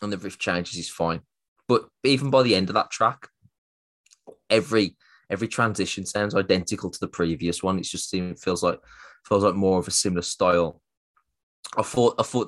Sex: male